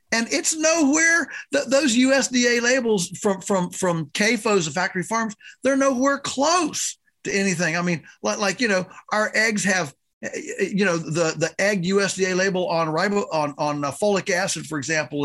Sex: male